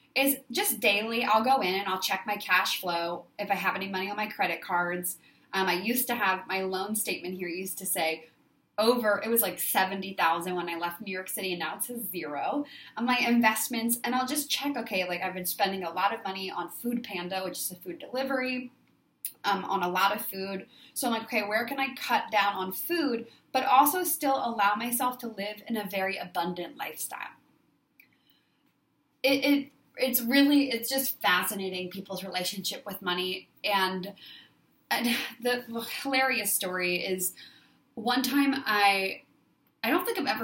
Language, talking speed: English, 190 wpm